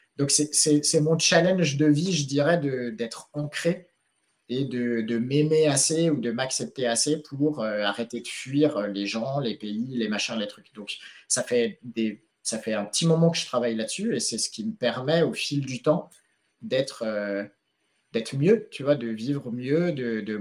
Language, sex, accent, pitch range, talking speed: French, male, French, 120-170 Hz, 180 wpm